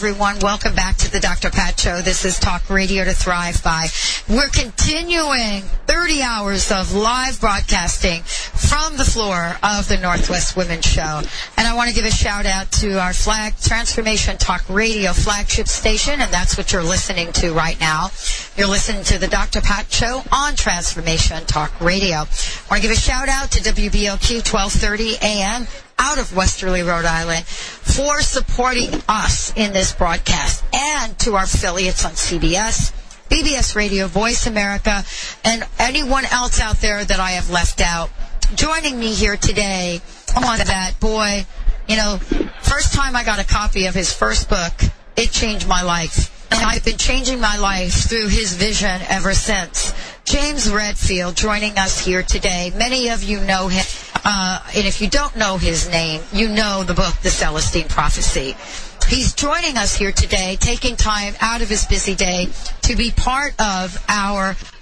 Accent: American